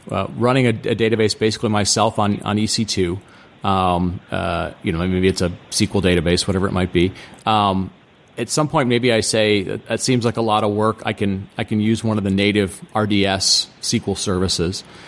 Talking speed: 200 wpm